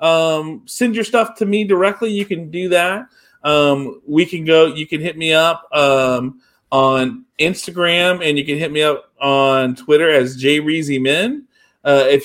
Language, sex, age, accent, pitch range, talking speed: English, male, 40-59, American, 130-165 Hz, 165 wpm